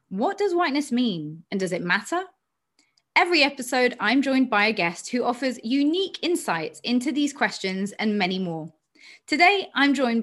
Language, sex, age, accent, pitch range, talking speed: English, female, 30-49, British, 185-255 Hz, 165 wpm